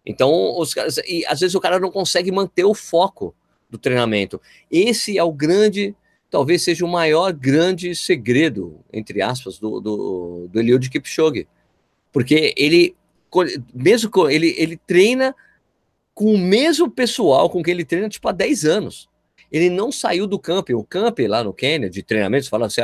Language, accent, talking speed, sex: Portuguese, Brazilian, 170 wpm, male